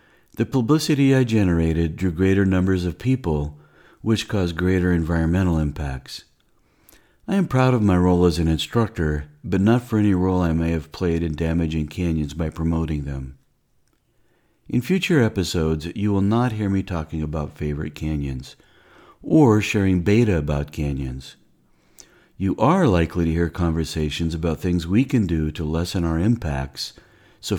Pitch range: 80-105 Hz